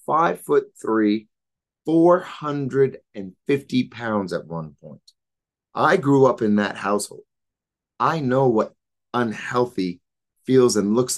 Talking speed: 115 wpm